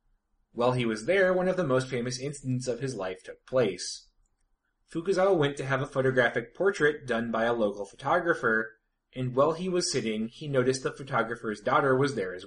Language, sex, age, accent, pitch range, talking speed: English, male, 30-49, American, 110-155 Hz, 190 wpm